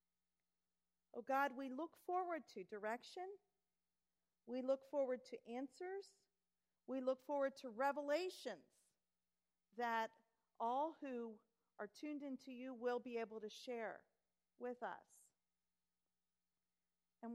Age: 40-59